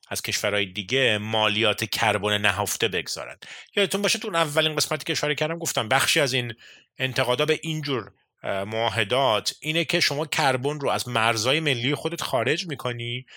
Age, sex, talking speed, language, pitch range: 30-49, male, 150 wpm, Persian, 105-150 Hz